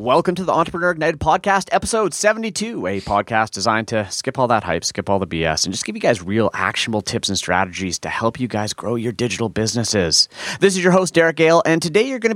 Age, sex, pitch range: 30-49, male, 100-155 Hz